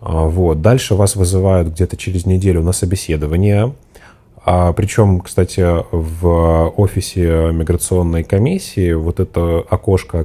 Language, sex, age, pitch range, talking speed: Russian, male, 20-39, 80-95 Hz, 110 wpm